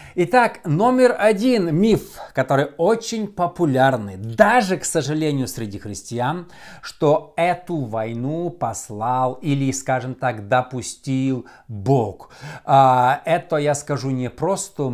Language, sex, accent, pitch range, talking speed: Russian, male, native, 130-180 Hz, 105 wpm